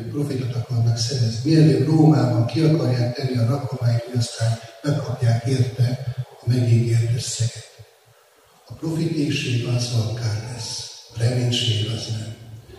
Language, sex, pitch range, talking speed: Hungarian, male, 115-130 Hz, 125 wpm